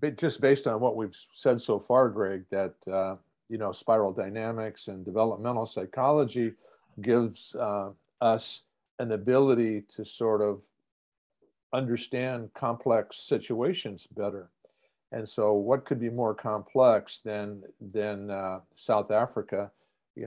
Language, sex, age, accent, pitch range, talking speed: English, male, 50-69, American, 105-130 Hz, 130 wpm